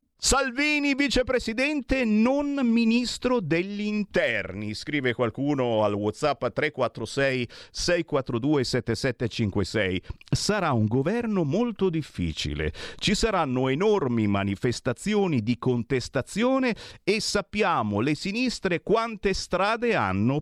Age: 40-59